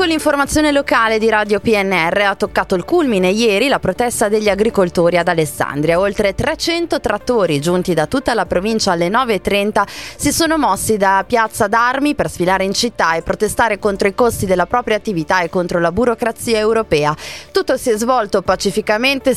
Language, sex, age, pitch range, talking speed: Italian, female, 20-39, 180-230 Hz, 170 wpm